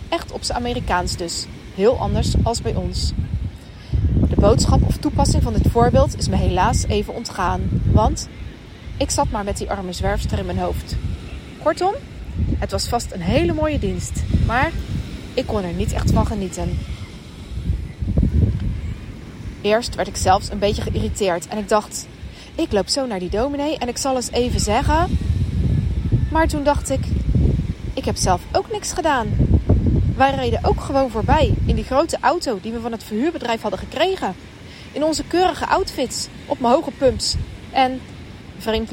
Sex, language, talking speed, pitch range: female, English, 165 wpm, 205-280 Hz